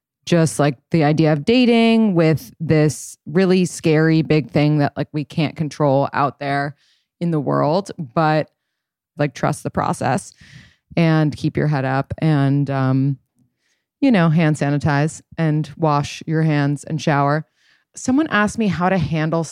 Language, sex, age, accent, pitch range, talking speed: English, female, 20-39, American, 145-165 Hz, 155 wpm